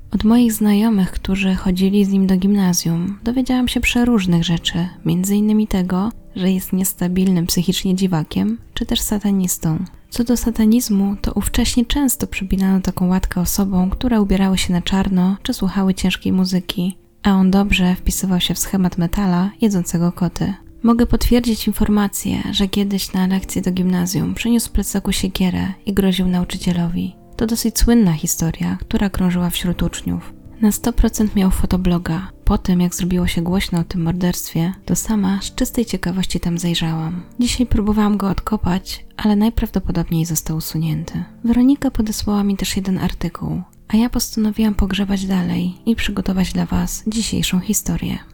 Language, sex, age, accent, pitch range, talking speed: Polish, female, 20-39, native, 180-215 Hz, 150 wpm